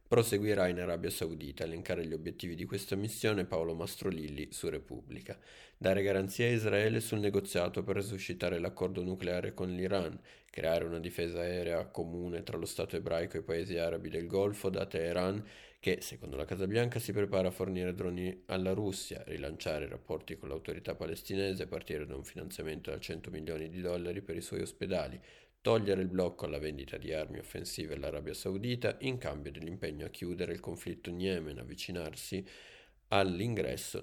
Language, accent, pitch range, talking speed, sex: Italian, native, 85-100 Hz, 170 wpm, male